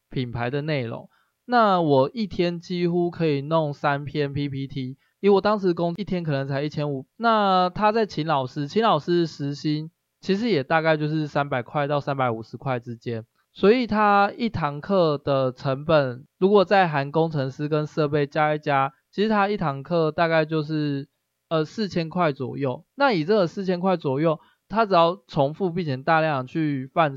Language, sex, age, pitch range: Chinese, male, 20-39, 135-175 Hz